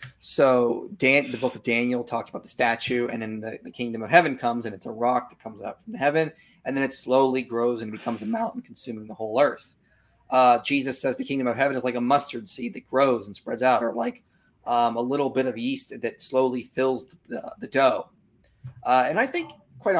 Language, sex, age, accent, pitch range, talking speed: English, male, 30-49, American, 120-190 Hz, 230 wpm